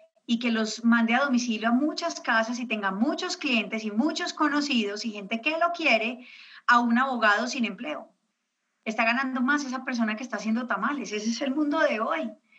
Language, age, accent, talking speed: Spanish, 30-49, Colombian, 195 wpm